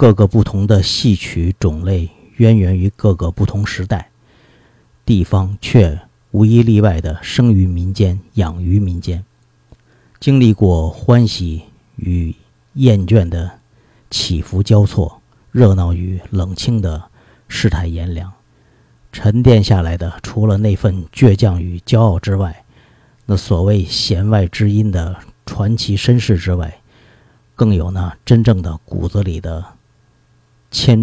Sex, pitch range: male, 90-115 Hz